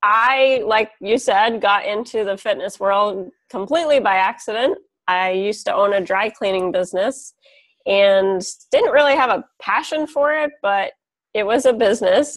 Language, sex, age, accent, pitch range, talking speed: English, female, 30-49, American, 195-260 Hz, 160 wpm